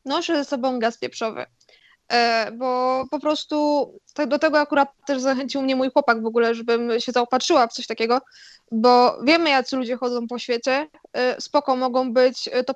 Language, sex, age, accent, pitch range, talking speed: Polish, female, 20-39, native, 245-300 Hz, 180 wpm